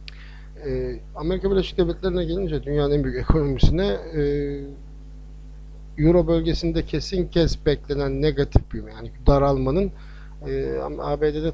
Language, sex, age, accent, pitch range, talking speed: Turkish, male, 50-69, native, 125-150 Hz, 105 wpm